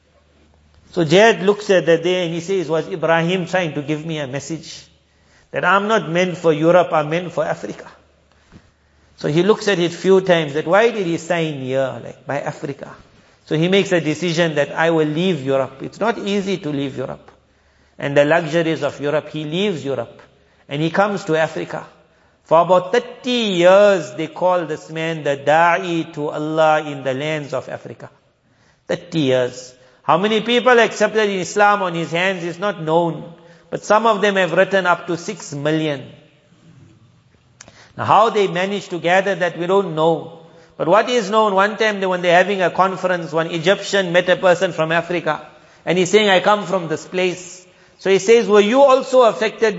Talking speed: 190 wpm